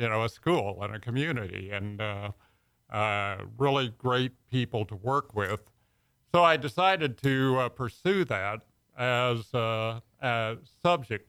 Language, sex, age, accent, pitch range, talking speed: English, male, 50-69, American, 110-135 Hz, 145 wpm